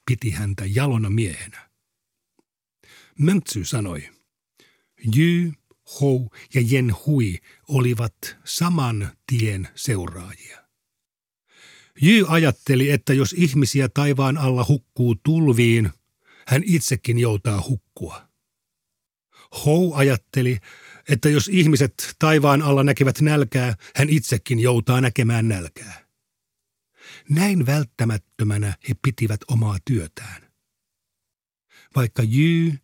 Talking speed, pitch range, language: 90 wpm, 110-145 Hz, Finnish